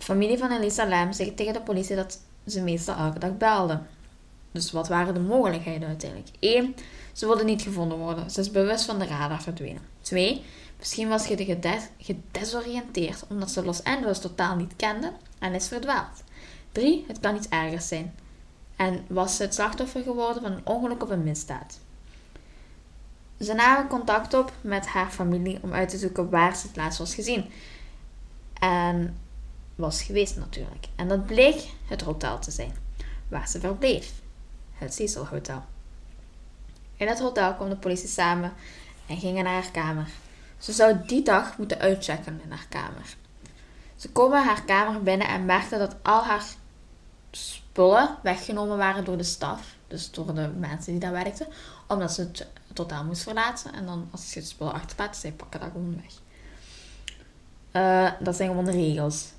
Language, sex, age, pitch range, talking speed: Dutch, female, 10-29, 165-210 Hz, 175 wpm